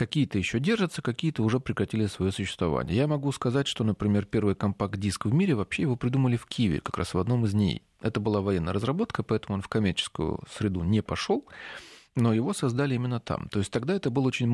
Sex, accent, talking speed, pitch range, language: male, native, 205 wpm, 100-125 Hz, Russian